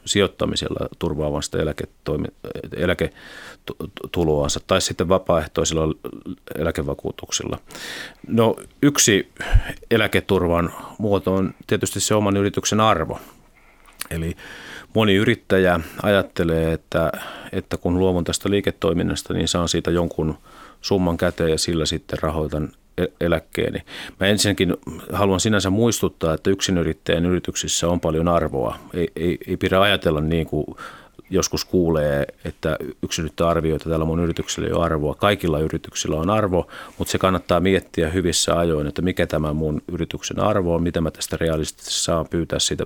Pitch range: 80-95 Hz